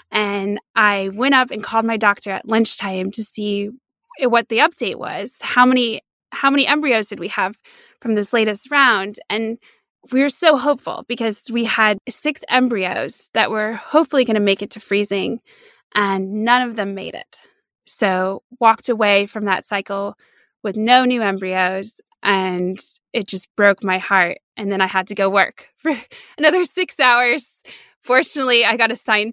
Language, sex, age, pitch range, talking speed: English, female, 20-39, 200-250 Hz, 170 wpm